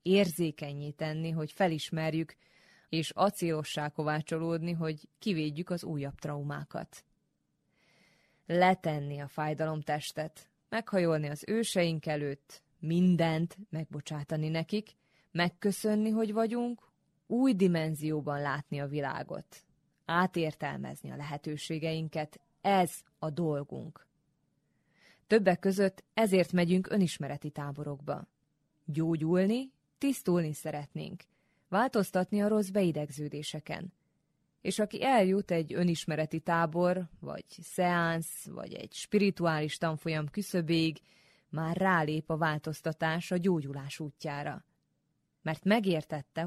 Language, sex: Hungarian, female